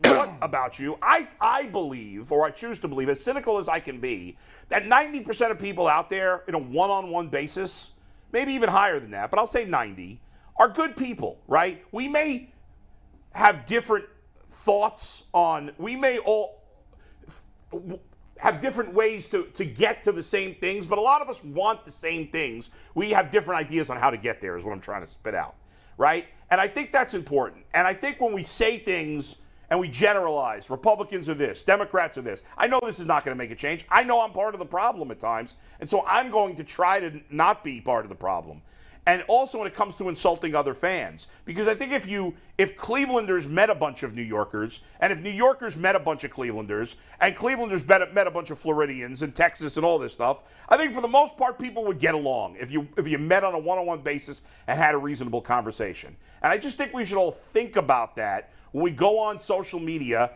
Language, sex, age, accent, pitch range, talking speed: English, male, 50-69, American, 150-225 Hz, 220 wpm